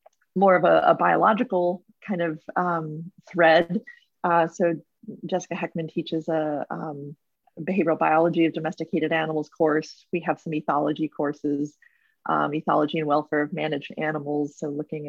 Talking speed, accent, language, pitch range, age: 145 wpm, American, English, 155-175 Hz, 30-49